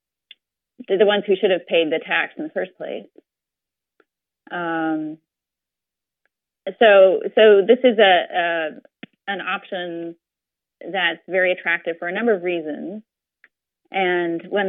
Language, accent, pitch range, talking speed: English, American, 170-205 Hz, 125 wpm